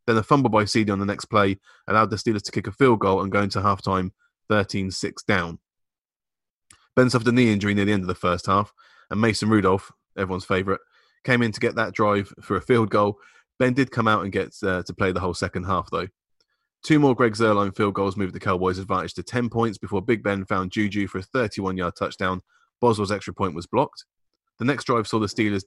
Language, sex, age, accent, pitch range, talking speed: English, male, 20-39, British, 95-115 Hz, 230 wpm